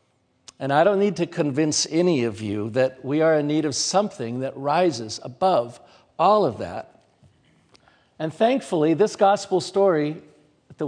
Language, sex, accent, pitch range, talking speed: English, male, American, 125-160 Hz, 155 wpm